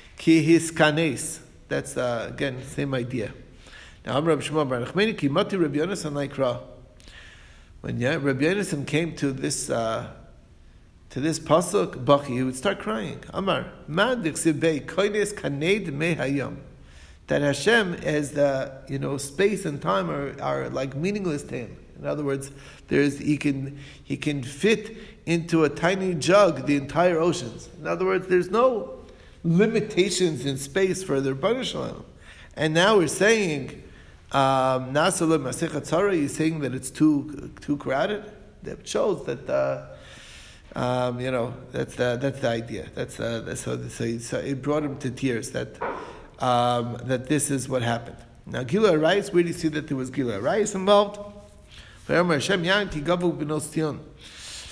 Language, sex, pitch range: English, male, 130-170 Hz